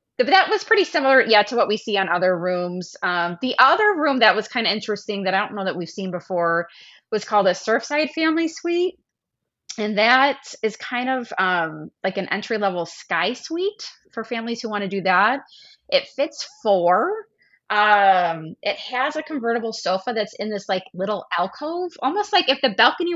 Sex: female